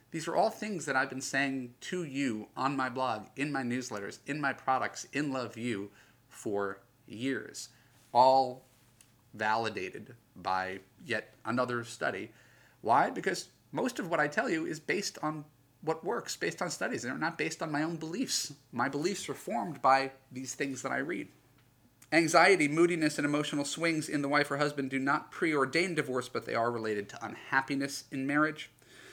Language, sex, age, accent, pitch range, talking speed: English, male, 30-49, American, 115-135 Hz, 175 wpm